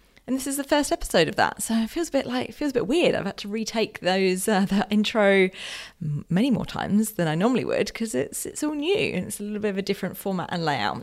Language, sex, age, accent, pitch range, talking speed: English, female, 30-49, British, 180-250 Hz, 270 wpm